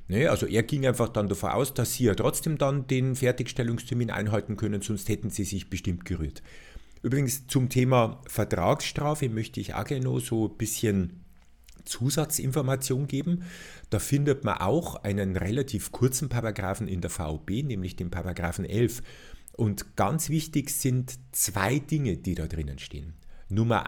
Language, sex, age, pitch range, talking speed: German, male, 50-69, 90-130 Hz, 155 wpm